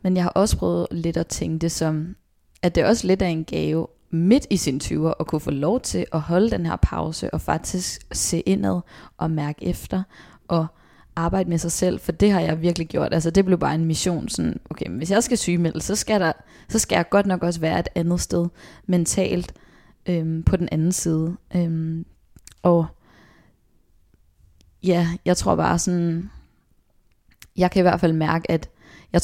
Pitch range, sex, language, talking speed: 160-180 Hz, female, Danish, 195 wpm